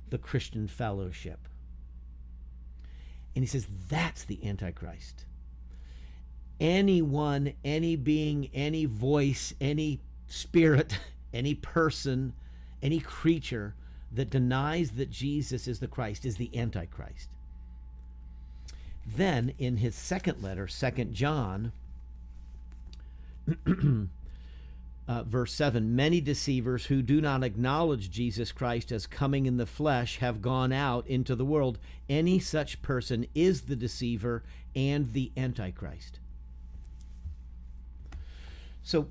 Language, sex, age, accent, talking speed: English, male, 50-69, American, 105 wpm